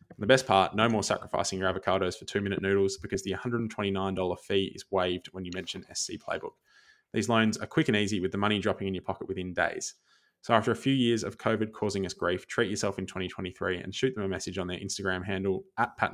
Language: English